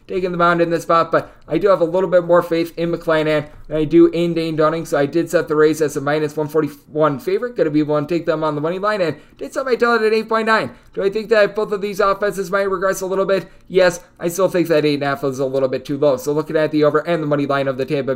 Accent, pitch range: American, 145-180 Hz